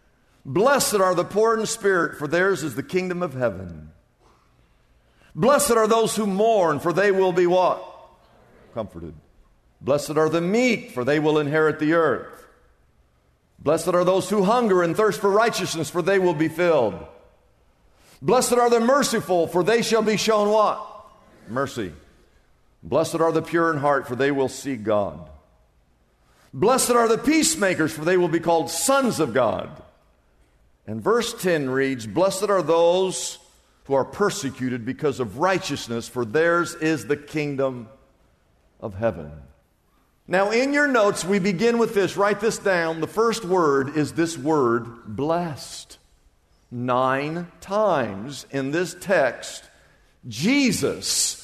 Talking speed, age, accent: 145 wpm, 50-69, American